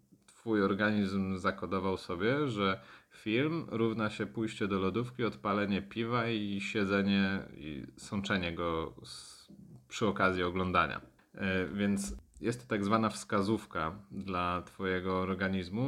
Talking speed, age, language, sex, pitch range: 115 wpm, 30-49, Polish, male, 90-105 Hz